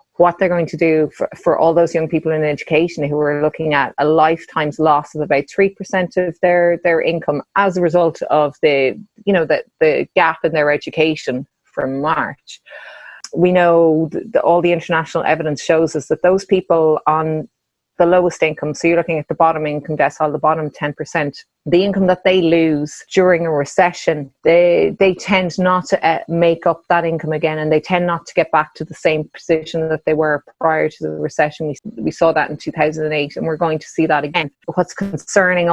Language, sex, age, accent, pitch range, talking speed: English, female, 30-49, Irish, 150-175 Hz, 205 wpm